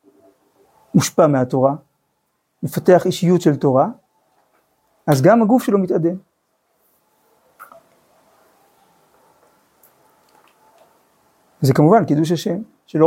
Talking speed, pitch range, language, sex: 75 wpm, 145-180 Hz, Hebrew, male